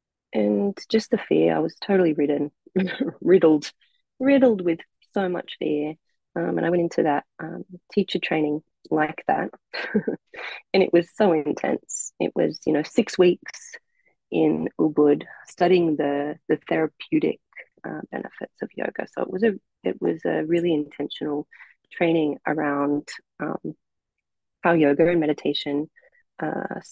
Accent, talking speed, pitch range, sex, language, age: Australian, 140 wpm, 150-200 Hz, female, English, 30-49